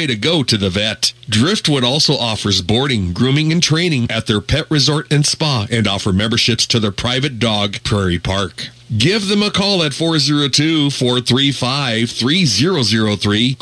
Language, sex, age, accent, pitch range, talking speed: English, male, 40-59, American, 110-145 Hz, 145 wpm